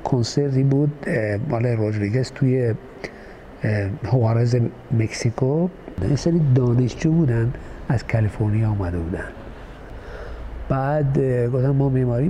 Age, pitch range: 50-69, 115-140 Hz